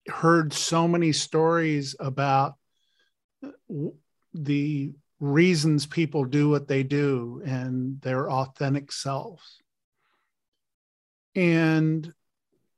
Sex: male